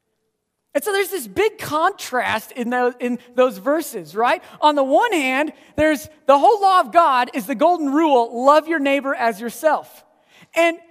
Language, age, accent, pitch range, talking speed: English, 40-59, American, 235-365 Hz, 175 wpm